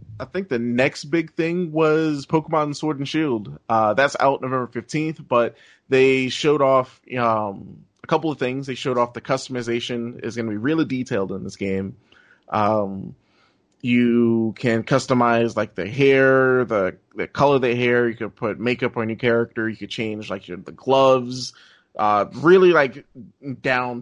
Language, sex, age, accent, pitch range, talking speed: English, male, 30-49, American, 115-140 Hz, 170 wpm